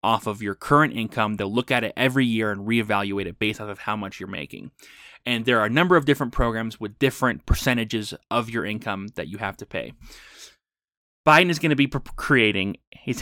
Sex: male